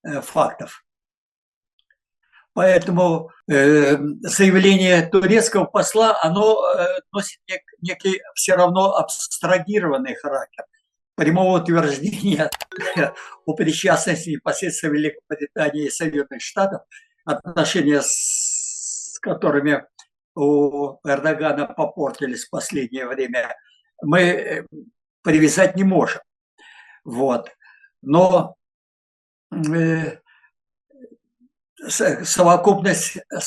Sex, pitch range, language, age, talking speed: male, 150-195 Hz, Russian, 60-79, 75 wpm